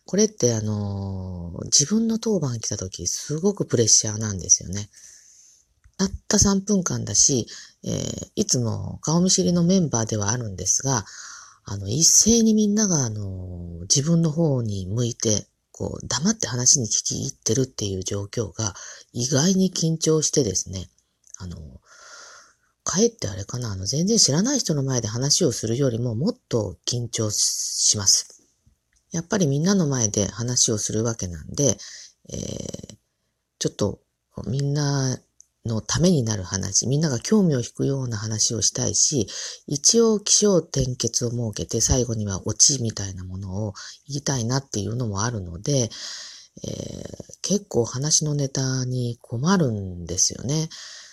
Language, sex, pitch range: Japanese, female, 105-155 Hz